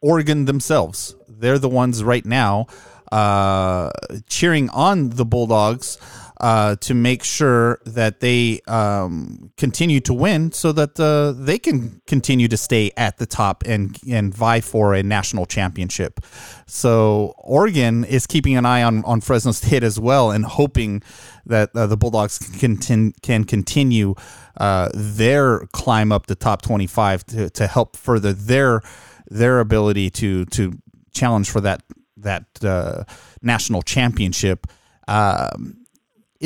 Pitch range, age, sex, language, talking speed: 105-130 Hz, 30-49, male, English, 140 wpm